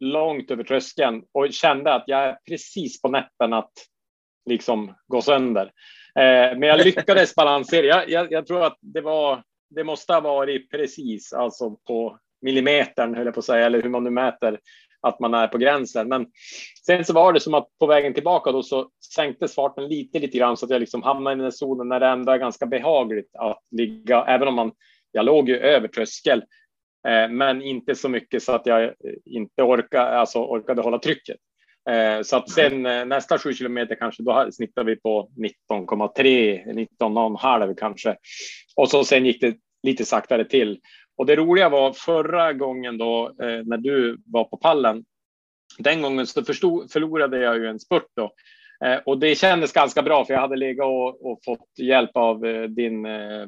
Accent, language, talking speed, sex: Norwegian, Swedish, 180 wpm, male